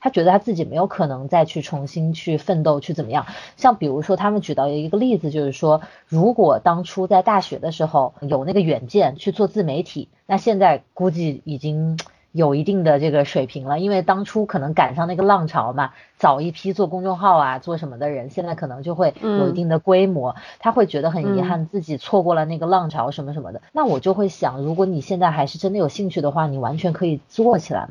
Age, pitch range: 20-39, 150-195 Hz